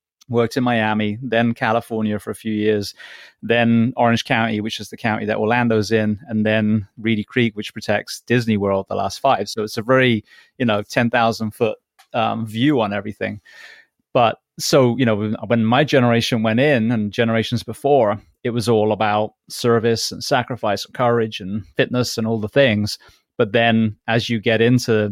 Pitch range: 110-120 Hz